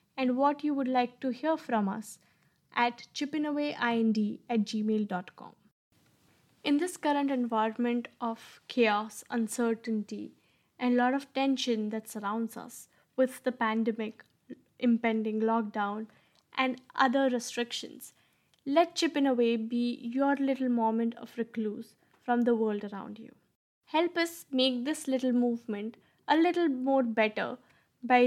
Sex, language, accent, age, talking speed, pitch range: female, English, Indian, 10-29, 125 wpm, 225-265 Hz